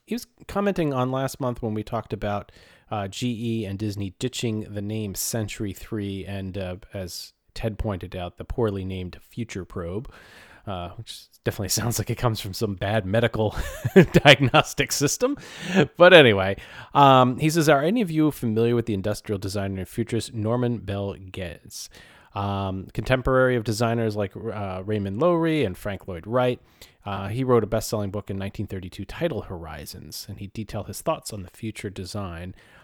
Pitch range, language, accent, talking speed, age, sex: 100-130 Hz, English, American, 170 wpm, 30-49, male